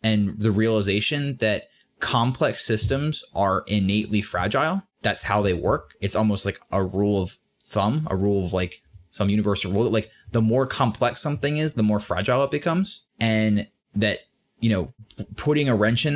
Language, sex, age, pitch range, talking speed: English, male, 20-39, 95-115 Hz, 175 wpm